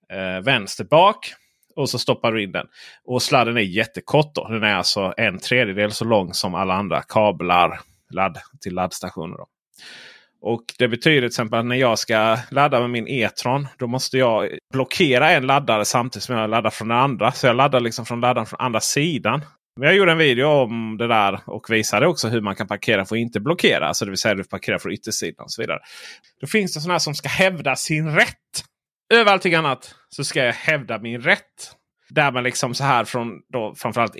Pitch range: 110-150 Hz